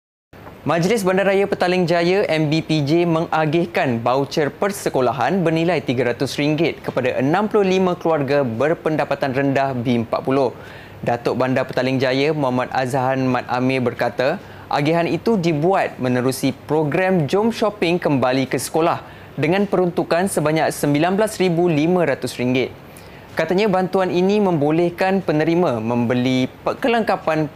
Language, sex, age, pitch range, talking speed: Malay, male, 20-39, 135-180 Hz, 100 wpm